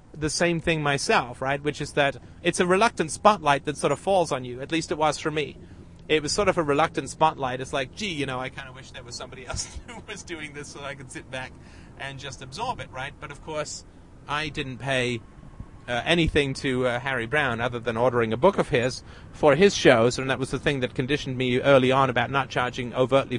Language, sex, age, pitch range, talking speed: English, male, 30-49, 125-160 Hz, 240 wpm